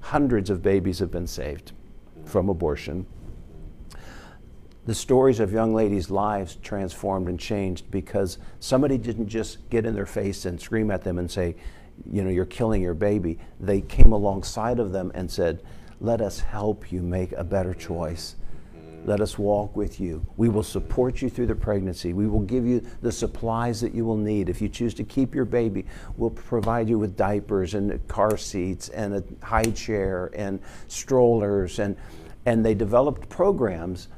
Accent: American